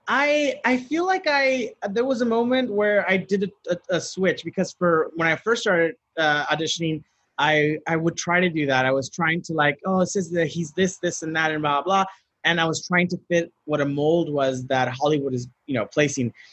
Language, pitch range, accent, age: English, 150-180 Hz, American, 30-49